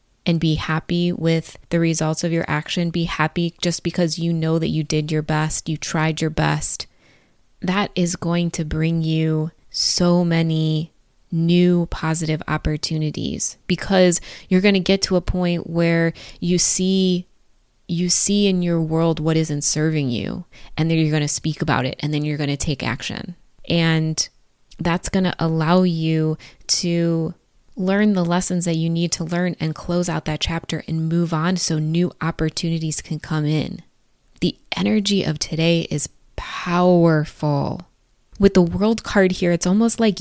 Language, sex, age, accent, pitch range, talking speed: English, female, 20-39, American, 155-180 Hz, 165 wpm